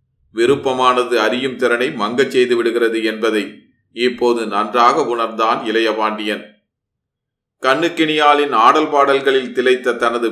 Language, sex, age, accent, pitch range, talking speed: Tamil, male, 30-49, native, 115-145 Hz, 100 wpm